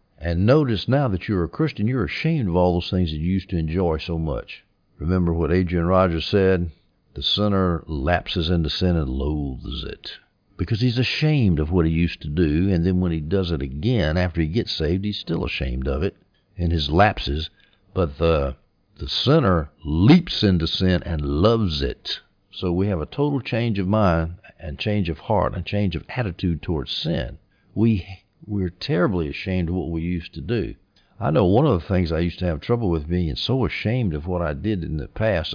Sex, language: male, English